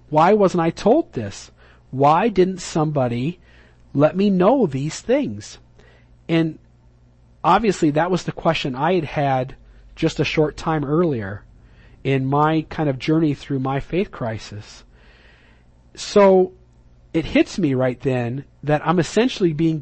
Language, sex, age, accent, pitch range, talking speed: English, male, 40-59, American, 120-175 Hz, 140 wpm